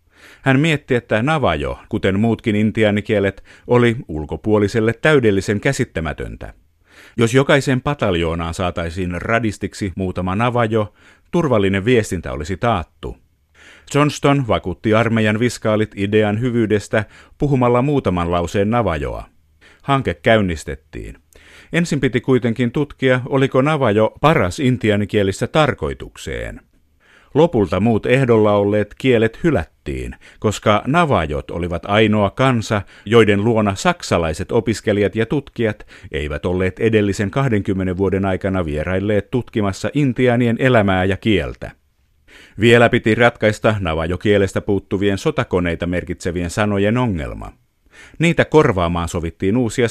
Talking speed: 100 wpm